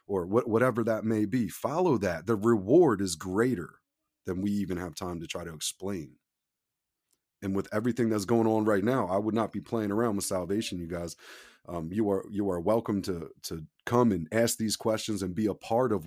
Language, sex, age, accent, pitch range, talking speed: English, male, 30-49, American, 100-125 Hz, 205 wpm